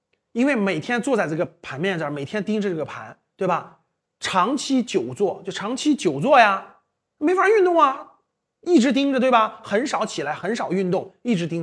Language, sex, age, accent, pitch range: Chinese, male, 30-49, native, 195-280 Hz